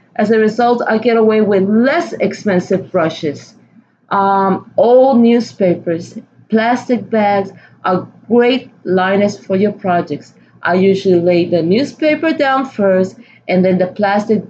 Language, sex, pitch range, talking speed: English, female, 185-240 Hz, 135 wpm